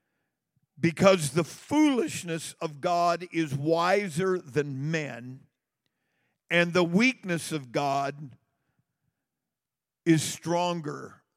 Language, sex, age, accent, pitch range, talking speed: English, male, 50-69, American, 140-180 Hz, 85 wpm